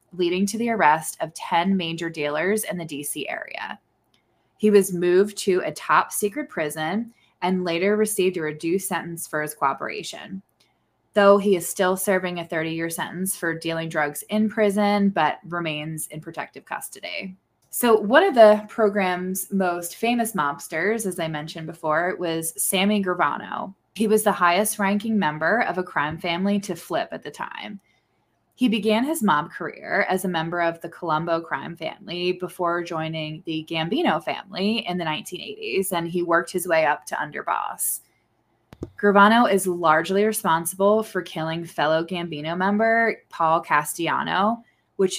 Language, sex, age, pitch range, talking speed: English, female, 20-39, 165-200 Hz, 155 wpm